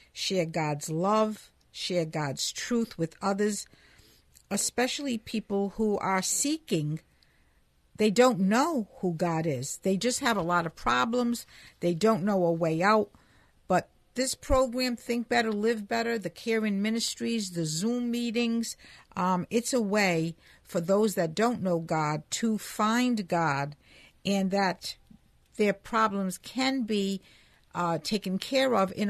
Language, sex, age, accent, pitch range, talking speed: English, female, 60-79, American, 170-225 Hz, 145 wpm